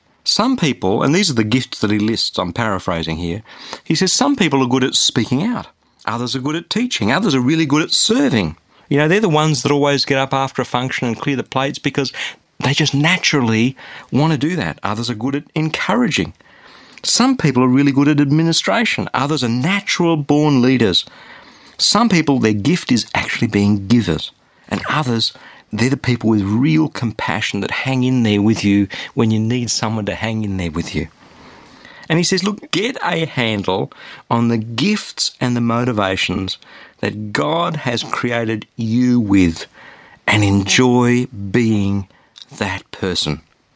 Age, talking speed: 50-69, 175 wpm